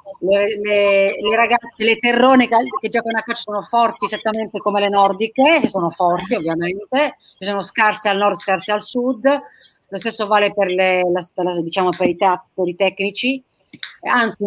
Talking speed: 175 wpm